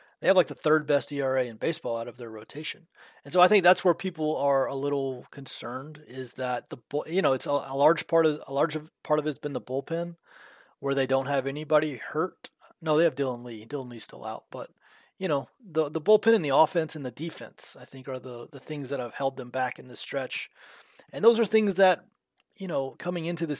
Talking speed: 235 wpm